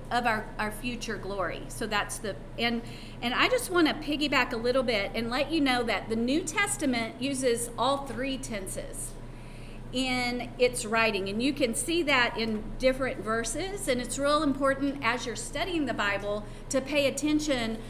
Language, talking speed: English, 175 wpm